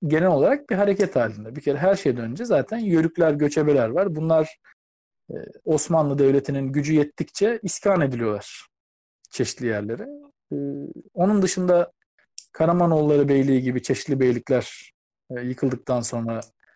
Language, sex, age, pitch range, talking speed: Turkish, male, 50-69, 125-175 Hz, 115 wpm